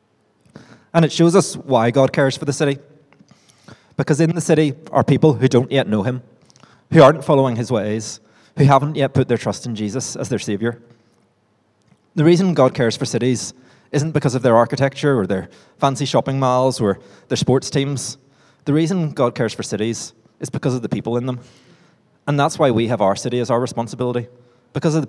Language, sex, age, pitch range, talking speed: English, male, 20-39, 115-145 Hz, 200 wpm